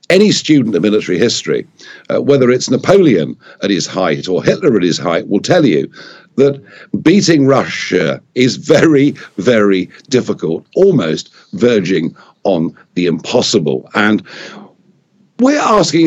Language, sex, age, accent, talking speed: English, male, 50-69, British, 130 wpm